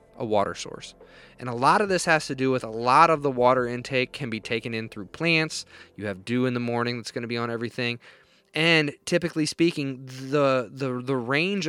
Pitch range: 115-150 Hz